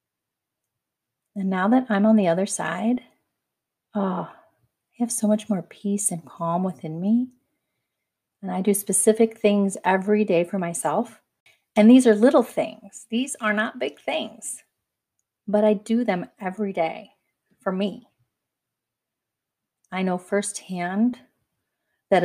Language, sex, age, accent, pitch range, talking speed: English, female, 30-49, American, 185-220 Hz, 130 wpm